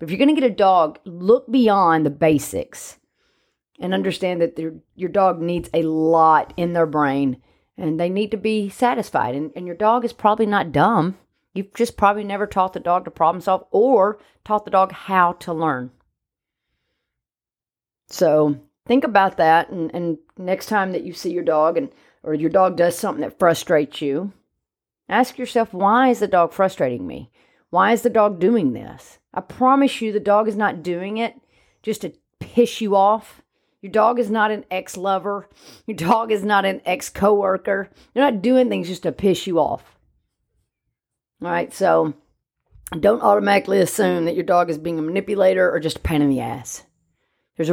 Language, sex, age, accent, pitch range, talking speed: English, female, 40-59, American, 160-210 Hz, 180 wpm